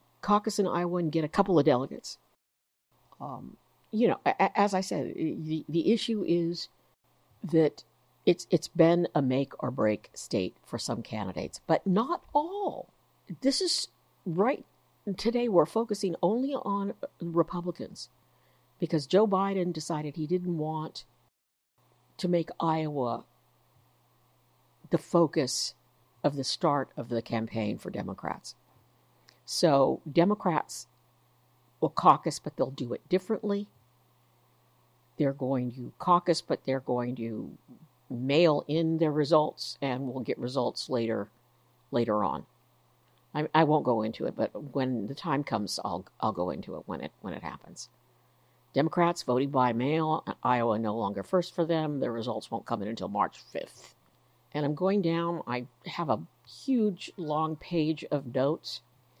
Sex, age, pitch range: female, 60-79, 125-175 Hz